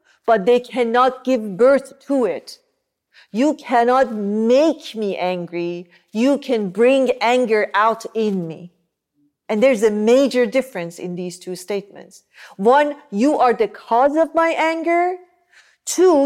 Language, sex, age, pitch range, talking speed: English, female, 40-59, 190-255 Hz, 135 wpm